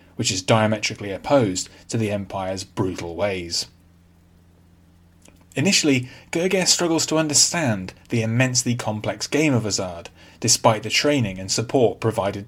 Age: 30-49